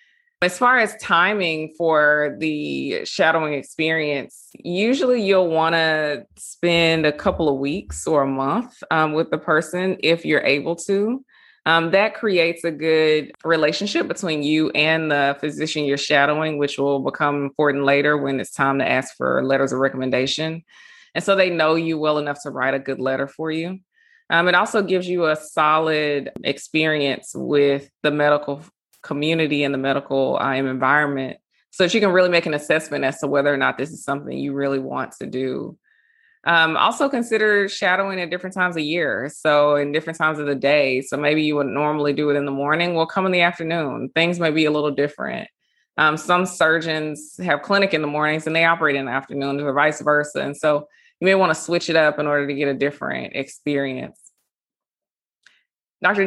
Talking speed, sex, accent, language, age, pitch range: 190 wpm, female, American, English, 20-39, 145-175 Hz